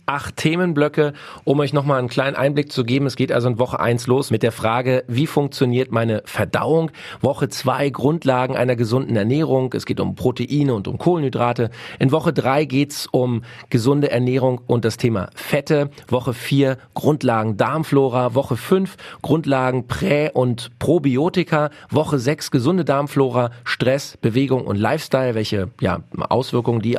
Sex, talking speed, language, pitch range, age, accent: male, 160 wpm, German, 120-150 Hz, 40-59, German